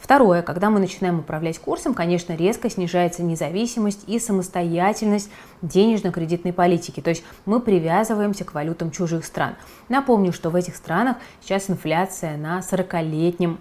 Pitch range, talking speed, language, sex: 170-215 Hz, 135 wpm, Russian, female